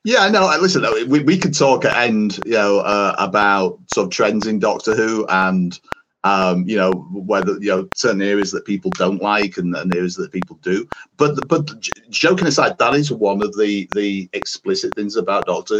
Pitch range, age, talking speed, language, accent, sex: 95-140 Hz, 40-59, 200 wpm, English, British, male